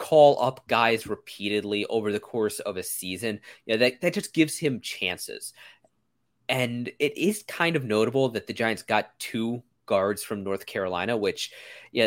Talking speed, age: 180 wpm, 20-39